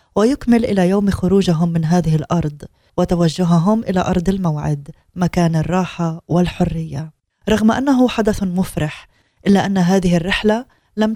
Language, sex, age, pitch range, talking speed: Arabic, female, 20-39, 165-195 Hz, 125 wpm